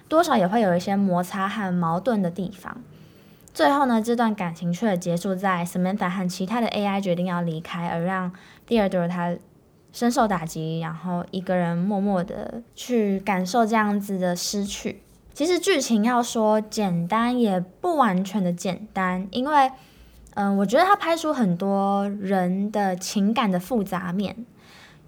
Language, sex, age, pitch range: Chinese, female, 10-29, 185-230 Hz